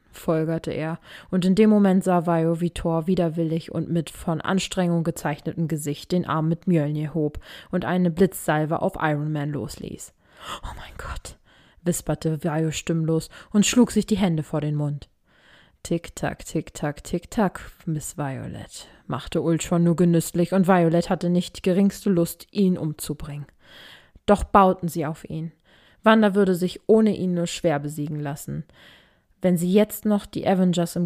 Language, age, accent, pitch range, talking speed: German, 20-39, German, 160-190 Hz, 165 wpm